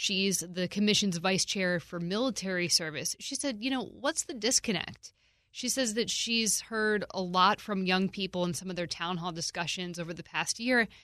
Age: 20-39